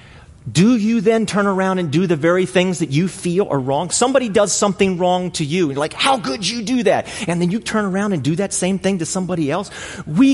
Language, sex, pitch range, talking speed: English, male, 115-180 Hz, 250 wpm